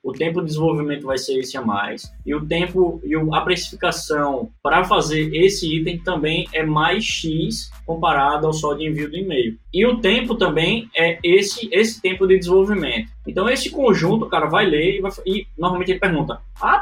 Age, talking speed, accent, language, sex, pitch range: 20-39, 190 wpm, Brazilian, Portuguese, male, 160-210 Hz